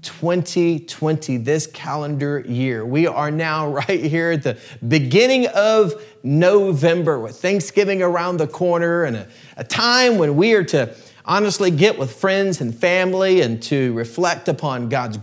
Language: English